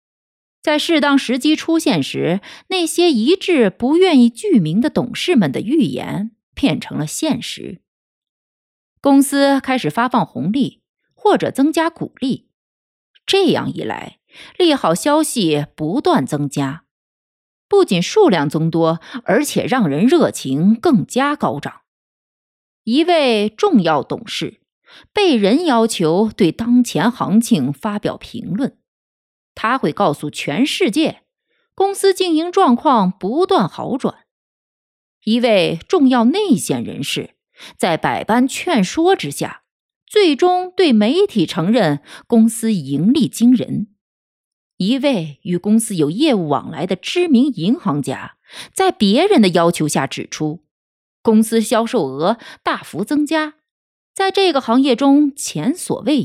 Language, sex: Chinese, female